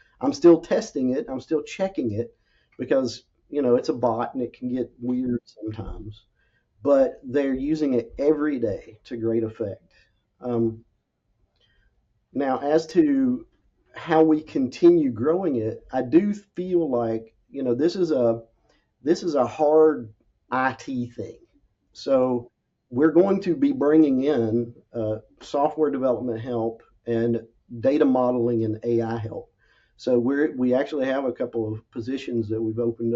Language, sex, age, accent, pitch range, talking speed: English, male, 40-59, American, 115-135 Hz, 150 wpm